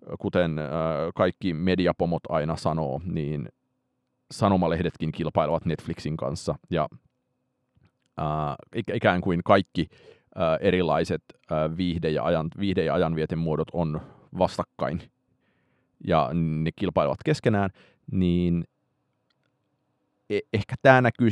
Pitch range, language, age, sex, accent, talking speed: 85-115 Hz, Finnish, 30-49, male, native, 100 wpm